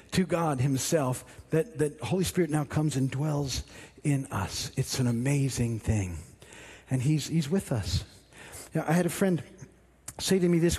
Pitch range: 140-185 Hz